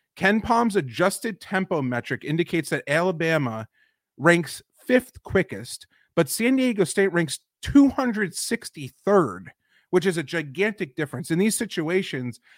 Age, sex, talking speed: 30-49, male, 120 wpm